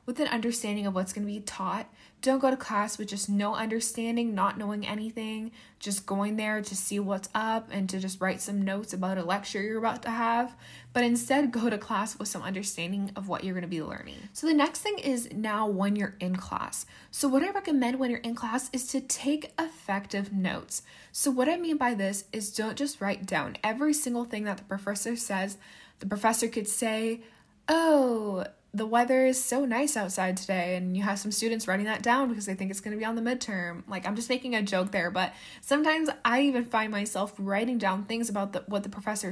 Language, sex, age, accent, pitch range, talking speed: English, female, 20-39, American, 195-240 Hz, 225 wpm